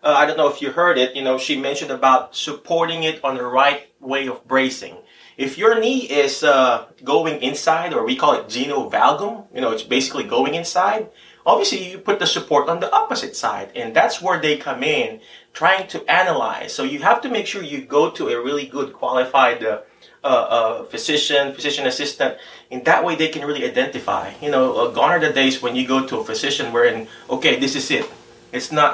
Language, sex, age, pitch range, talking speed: English, male, 30-49, 130-160 Hz, 210 wpm